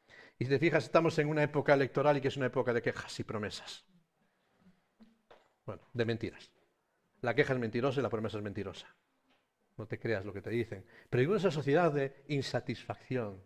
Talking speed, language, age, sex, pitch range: 190 wpm, Spanish, 50-69, male, 115-155 Hz